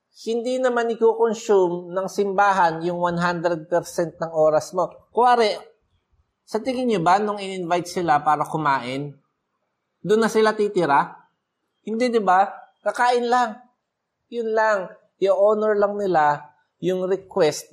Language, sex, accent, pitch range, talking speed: Filipino, male, native, 150-205 Hz, 120 wpm